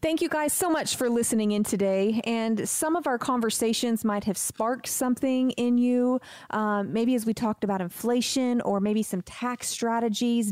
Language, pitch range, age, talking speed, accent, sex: English, 210-255 Hz, 30-49, 185 wpm, American, female